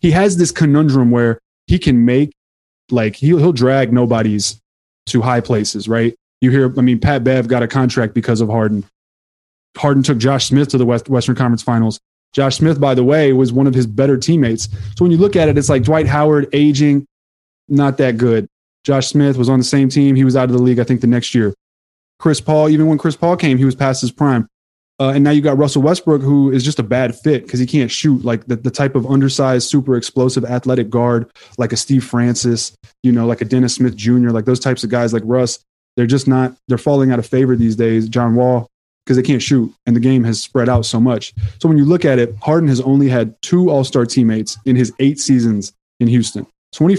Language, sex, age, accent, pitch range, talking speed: English, male, 20-39, American, 115-140 Hz, 235 wpm